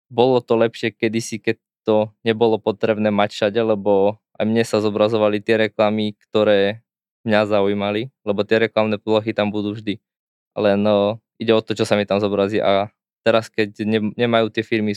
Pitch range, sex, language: 105-110 Hz, male, Slovak